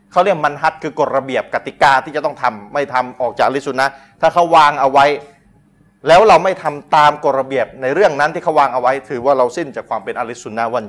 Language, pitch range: Thai, 150-210 Hz